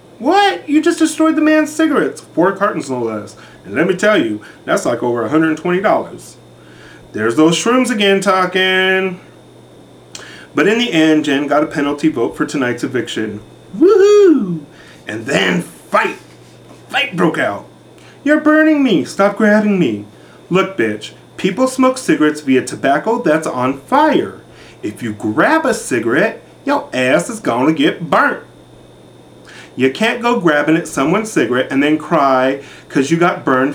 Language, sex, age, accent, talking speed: English, male, 40-59, American, 155 wpm